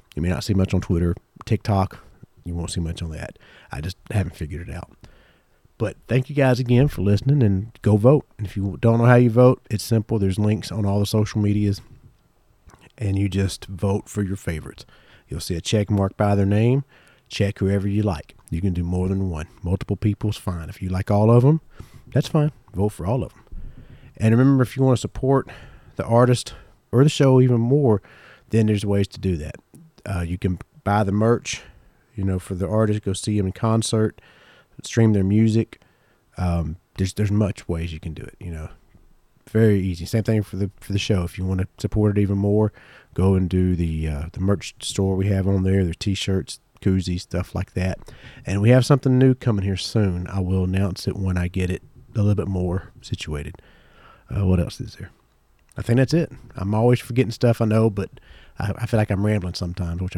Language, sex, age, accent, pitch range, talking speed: English, male, 40-59, American, 95-115 Hz, 215 wpm